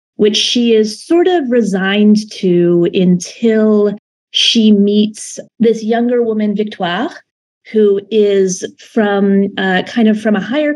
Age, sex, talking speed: 30-49, female, 130 wpm